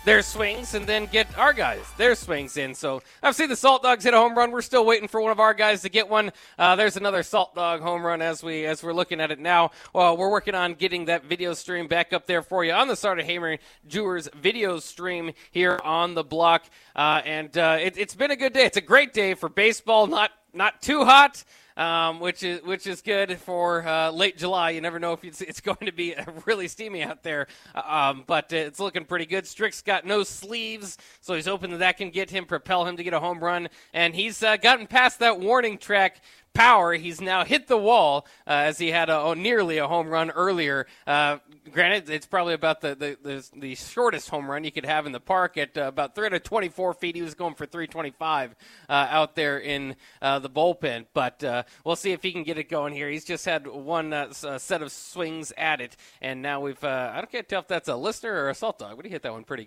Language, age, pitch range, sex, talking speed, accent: English, 20-39, 155-195 Hz, male, 240 wpm, American